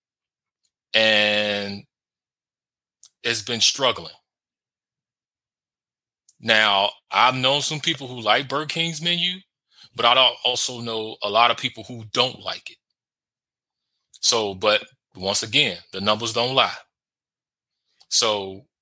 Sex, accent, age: male, American, 20-39